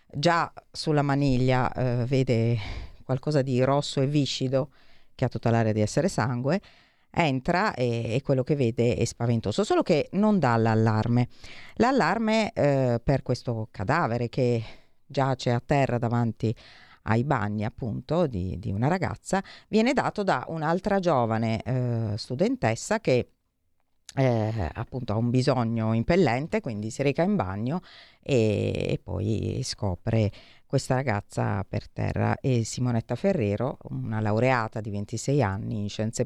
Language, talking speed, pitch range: Italian, 140 wpm, 110-135 Hz